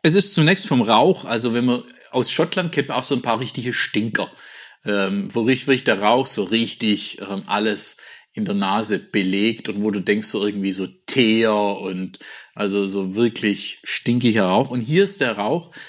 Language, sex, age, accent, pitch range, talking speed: German, male, 50-69, German, 110-140 Hz, 185 wpm